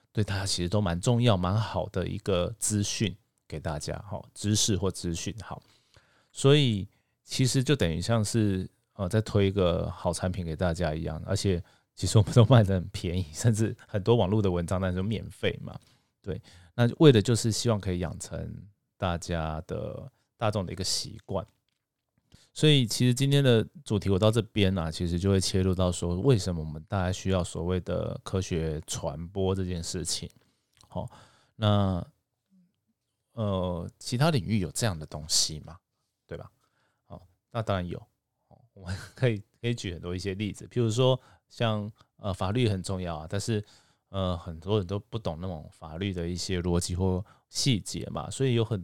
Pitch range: 90-115 Hz